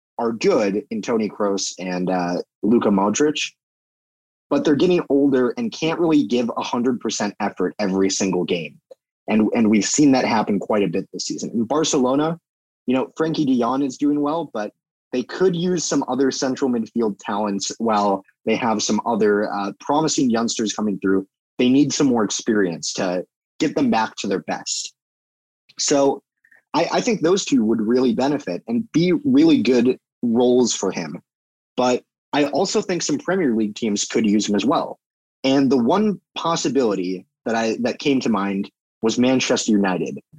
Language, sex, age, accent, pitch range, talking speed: English, male, 20-39, American, 105-145 Hz, 175 wpm